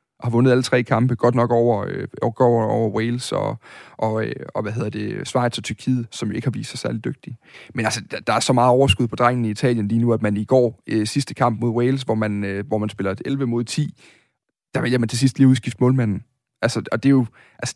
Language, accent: Danish, native